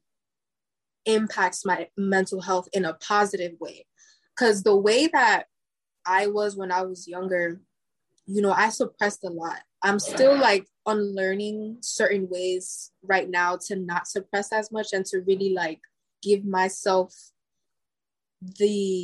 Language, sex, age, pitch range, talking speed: English, female, 20-39, 185-225 Hz, 140 wpm